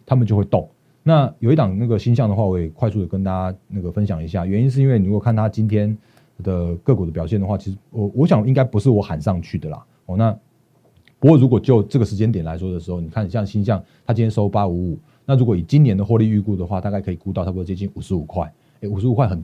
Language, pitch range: Chinese, 95-115 Hz